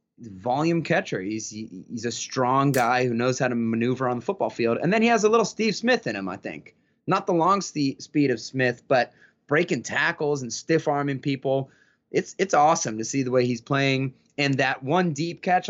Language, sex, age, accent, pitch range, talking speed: English, male, 20-39, American, 120-155 Hz, 215 wpm